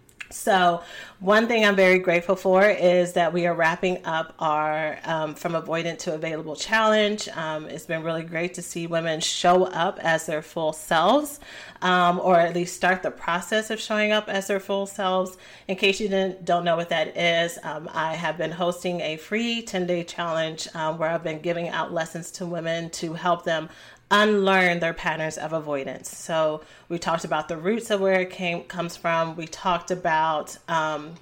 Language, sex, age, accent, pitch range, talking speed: English, female, 30-49, American, 160-185 Hz, 190 wpm